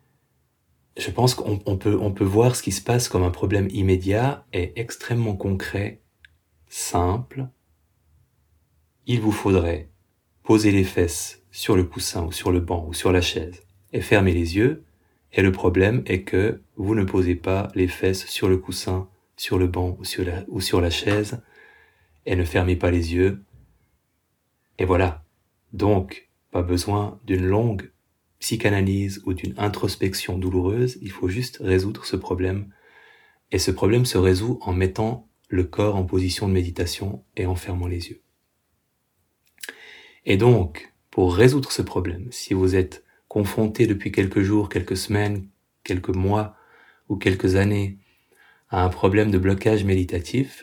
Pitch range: 90-105 Hz